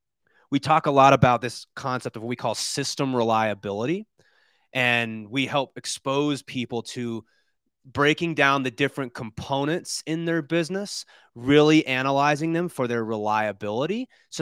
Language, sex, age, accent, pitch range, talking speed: English, male, 30-49, American, 115-145 Hz, 140 wpm